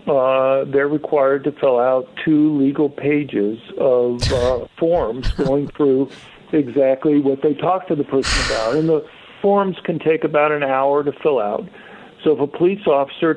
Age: 50-69